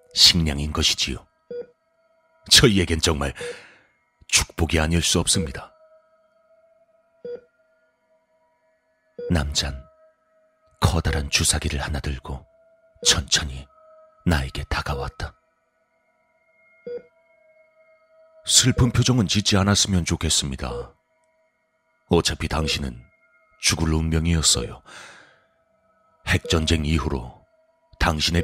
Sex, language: male, Korean